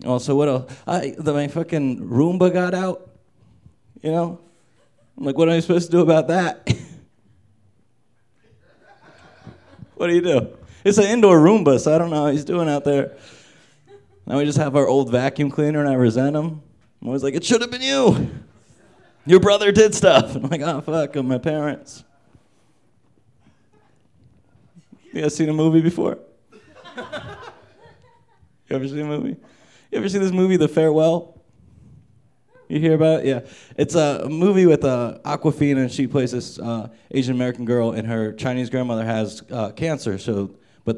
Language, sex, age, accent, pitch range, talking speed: English, male, 30-49, American, 125-160 Hz, 165 wpm